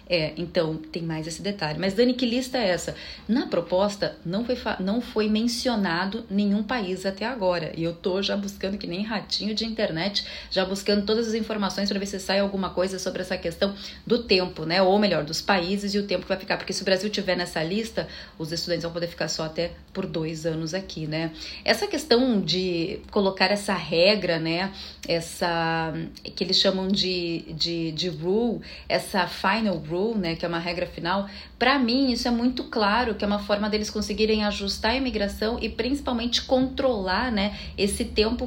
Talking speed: 195 wpm